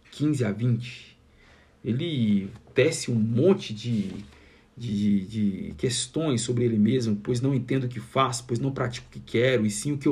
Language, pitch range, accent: Portuguese, 110-145 Hz, Brazilian